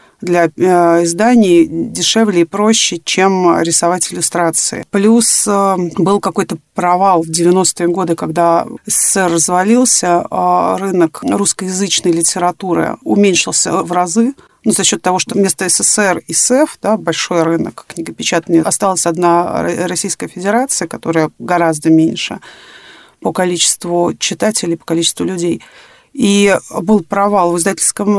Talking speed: 115 wpm